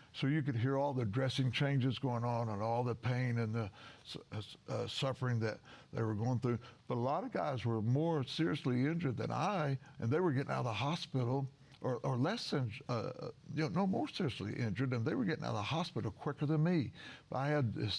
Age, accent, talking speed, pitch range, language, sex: 60-79, American, 225 wpm, 115-140 Hz, English, male